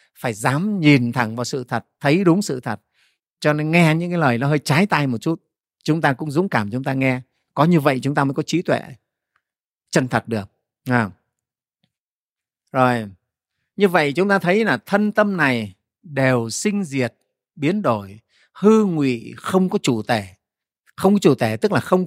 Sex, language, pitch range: male, Vietnamese, 125-195 Hz